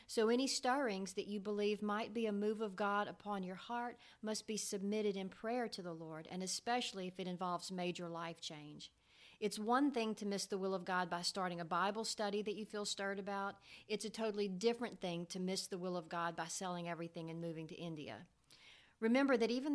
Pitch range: 180-215 Hz